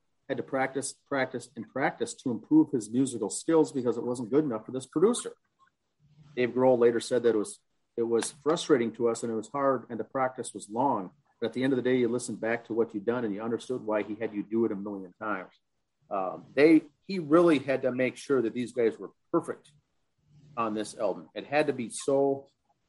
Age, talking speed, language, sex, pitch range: 40-59, 235 wpm, English, male, 115-145 Hz